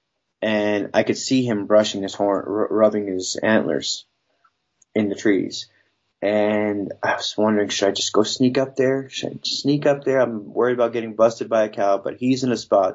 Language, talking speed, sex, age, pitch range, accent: English, 210 wpm, male, 20-39, 100-115 Hz, American